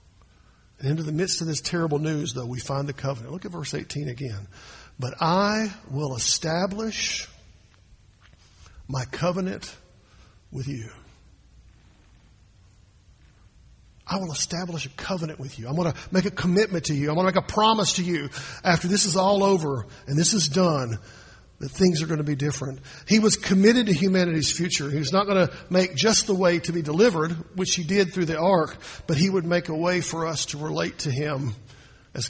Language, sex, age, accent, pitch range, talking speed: English, male, 50-69, American, 120-180 Hz, 190 wpm